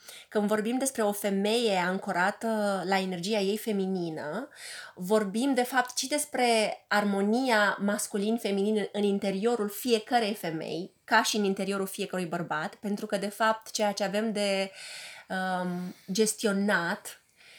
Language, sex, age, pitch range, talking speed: Romanian, female, 20-39, 195-245 Hz, 125 wpm